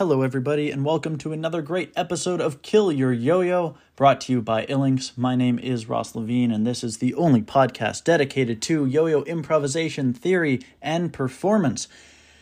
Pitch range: 125-165 Hz